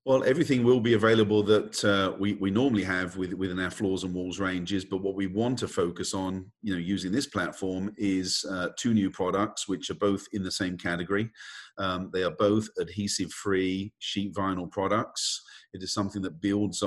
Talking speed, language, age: 195 wpm, English, 40-59